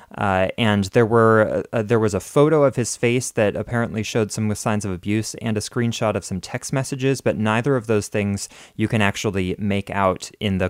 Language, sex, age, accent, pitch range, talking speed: English, male, 20-39, American, 100-120 Hz, 215 wpm